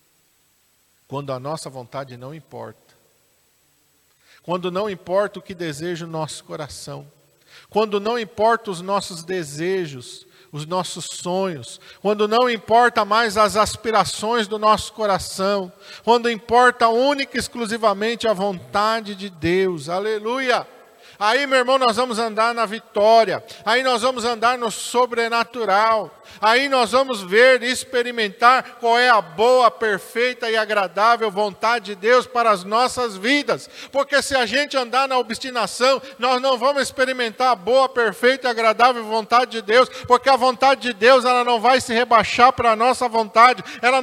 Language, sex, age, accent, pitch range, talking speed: Portuguese, male, 50-69, Brazilian, 215-265 Hz, 150 wpm